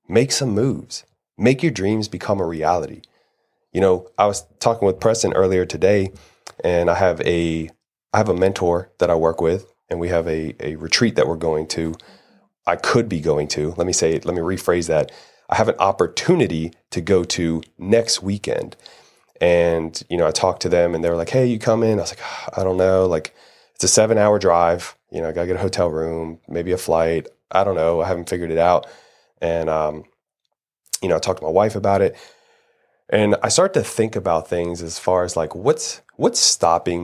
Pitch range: 85-100 Hz